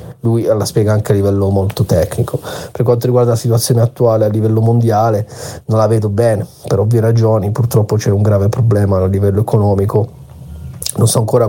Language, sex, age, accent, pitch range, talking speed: Italian, male, 40-59, native, 105-120 Hz, 185 wpm